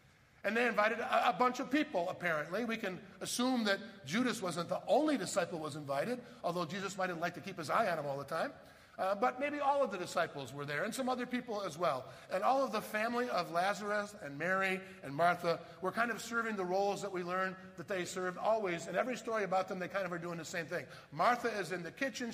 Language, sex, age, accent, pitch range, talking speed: English, male, 50-69, American, 180-235 Hz, 245 wpm